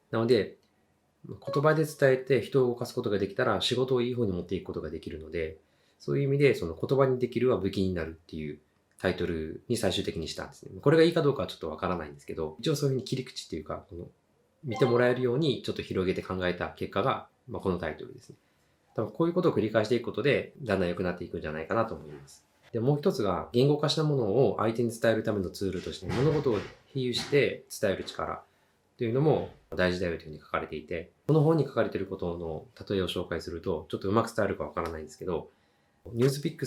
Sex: male